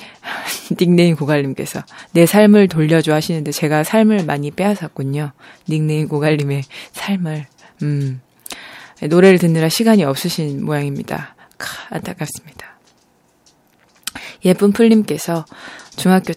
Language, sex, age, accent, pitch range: Korean, female, 20-39, native, 155-195 Hz